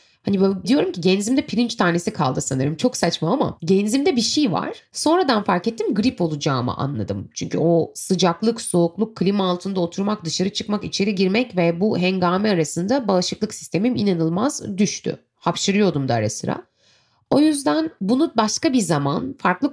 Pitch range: 165-235 Hz